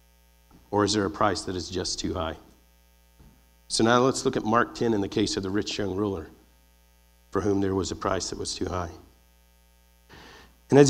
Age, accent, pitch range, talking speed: 40-59, American, 70-115 Hz, 205 wpm